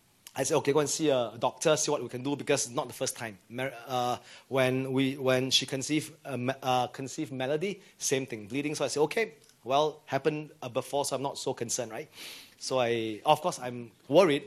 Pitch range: 130-160 Hz